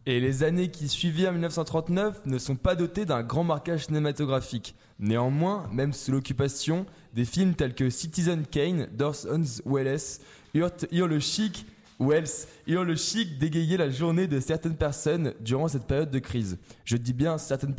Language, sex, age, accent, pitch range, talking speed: French, male, 20-39, French, 125-160 Hz, 150 wpm